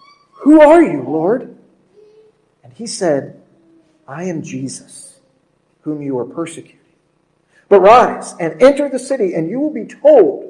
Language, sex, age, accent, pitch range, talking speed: English, male, 50-69, American, 160-230 Hz, 145 wpm